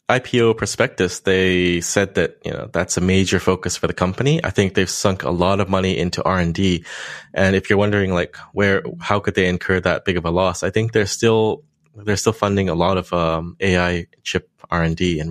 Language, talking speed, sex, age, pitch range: English, 210 wpm, male, 20-39, 85-100 Hz